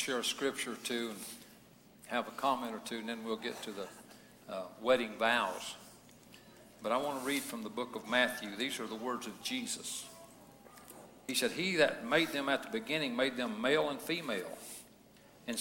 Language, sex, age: English, male, 60-79